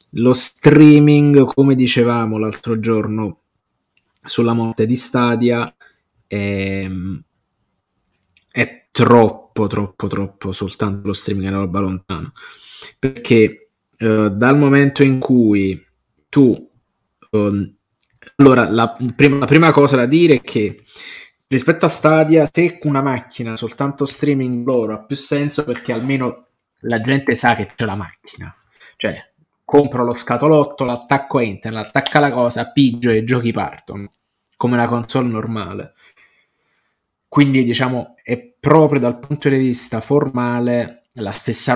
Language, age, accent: Italian, 20-39, native